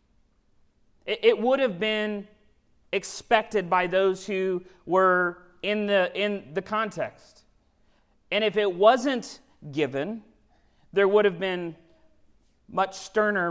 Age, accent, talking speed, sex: 40-59, American, 110 wpm, male